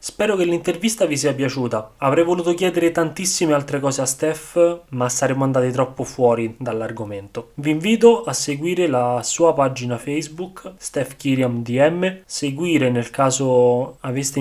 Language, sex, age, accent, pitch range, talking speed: Italian, male, 20-39, native, 130-165 Hz, 135 wpm